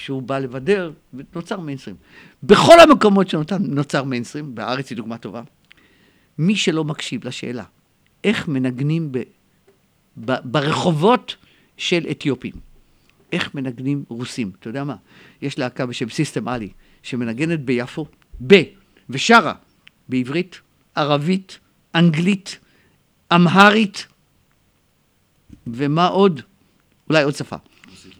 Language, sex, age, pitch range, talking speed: Hebrew, male, 50-69, 125-175 Hz, 100 wpm